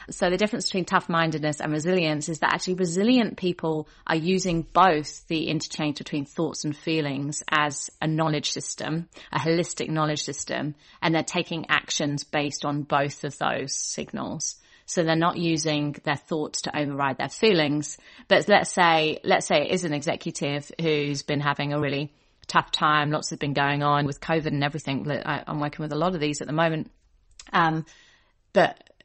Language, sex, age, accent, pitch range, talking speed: English, female, 30-49, British, 145-170 Hz, 180 wpm